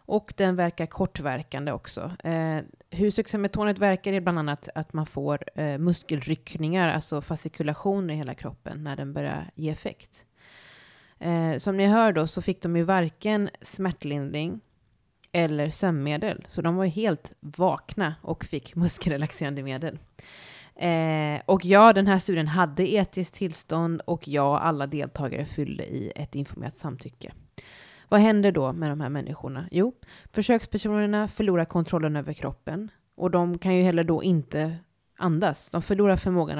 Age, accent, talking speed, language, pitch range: 20-39, native, 150 wpm, Swedish, 150-185 Hz